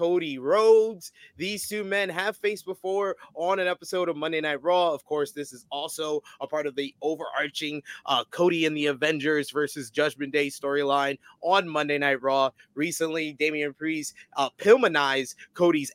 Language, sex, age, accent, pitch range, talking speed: English, male, 20-39, American, 150-205 Hz, 165 wpm